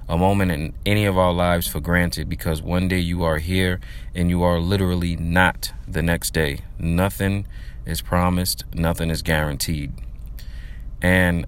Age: 30-49